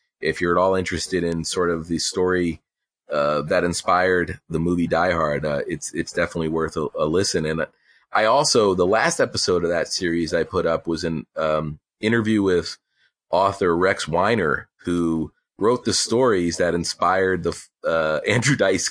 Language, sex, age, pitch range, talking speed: English, male, 40-59, 80-95 Hz, 175 wpm